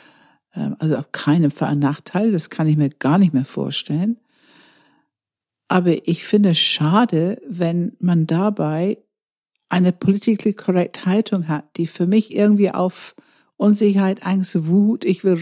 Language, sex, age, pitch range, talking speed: German, female, 60-79, 165-210 Hz, 145 wpm